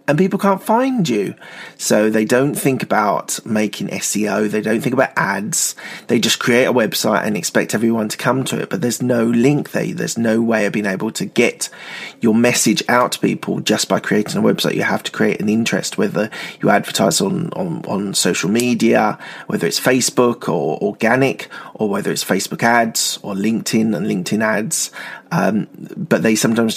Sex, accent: male, British